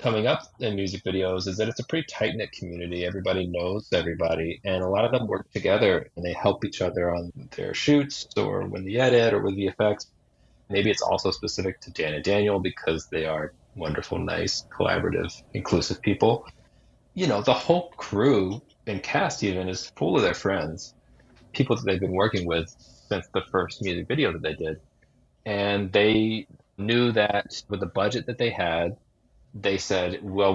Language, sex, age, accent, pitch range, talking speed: English, male, 30-49, American, 85-105 Hz, 185 wpm